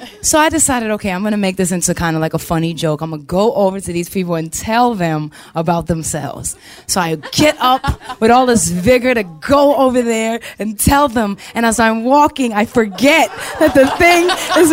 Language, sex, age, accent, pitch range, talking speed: English, female, 20-39, American, 190-285 Hz, 220 wpm